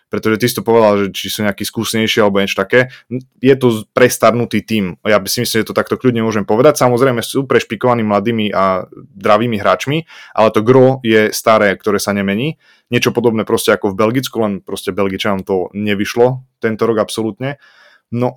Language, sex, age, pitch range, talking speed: Slovak, male, 20-39, 105-125 Hz, 185 wpm